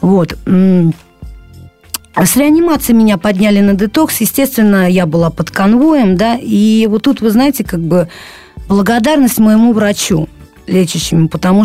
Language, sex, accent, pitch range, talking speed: Russian, female, native, 170-225 Hz, 130 wpm